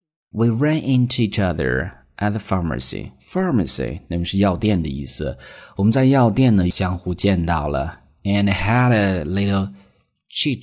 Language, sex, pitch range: Chinese, male, 85-105 Hz